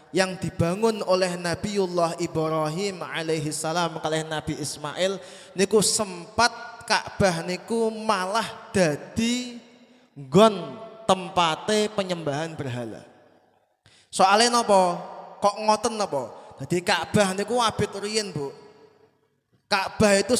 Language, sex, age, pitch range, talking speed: Indonesian, male, 20-39, 175-225 Hz, 95 wpm